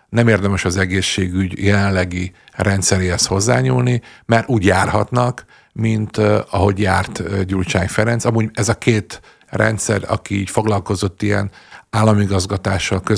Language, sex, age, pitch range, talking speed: Hungarian, male, 50-69, 95-110 Hz, 120 wpm